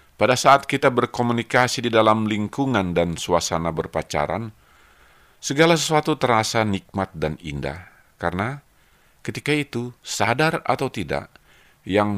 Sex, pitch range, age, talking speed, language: male, 80-120 Hz, 50-69, 115 wpm, Indonesian